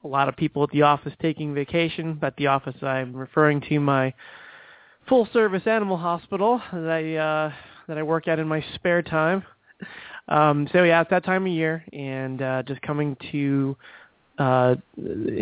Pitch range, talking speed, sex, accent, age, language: 140-170 Hz, 170 wpm, male, American, 20-39, English